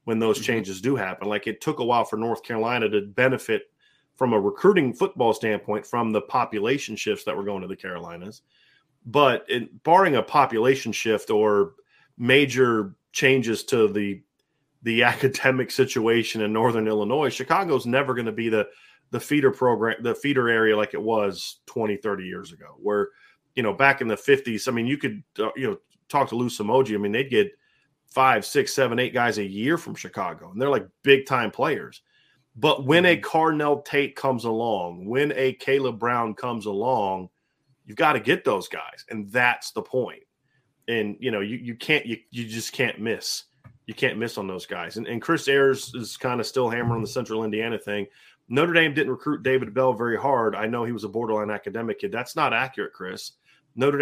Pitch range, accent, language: 110-135 Hz, American, English